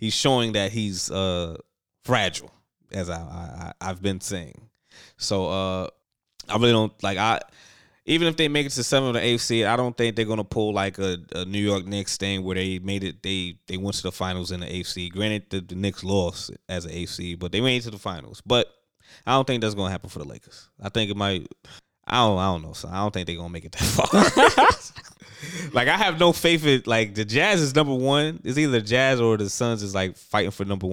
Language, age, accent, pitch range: English, 20-39, American, 90-115 Hz